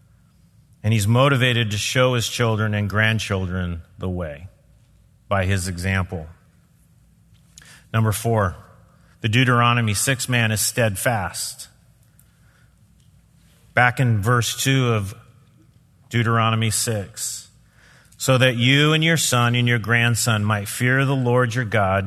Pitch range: 110-130 Hz